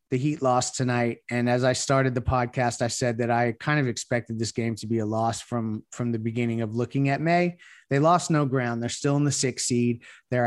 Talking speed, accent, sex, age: 240 wpm, American, male, 30-49